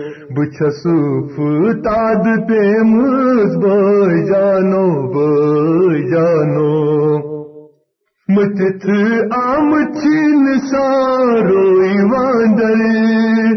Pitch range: 150-225 Hz